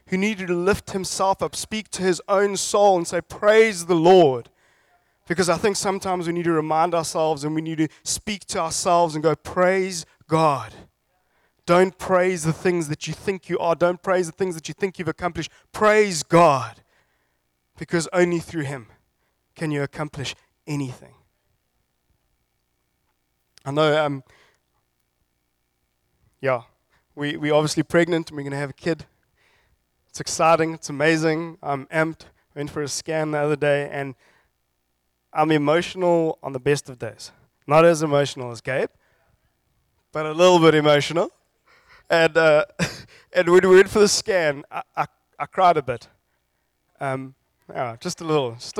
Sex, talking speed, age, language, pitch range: male, 160 wpm, 20-39, English, 130-180 Hz